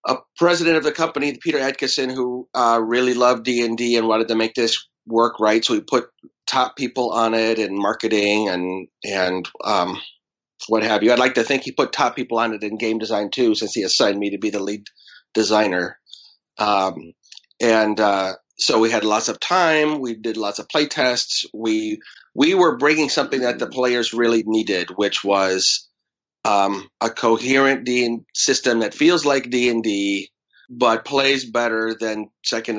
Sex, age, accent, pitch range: male, 30-49, American, 105-125 Hz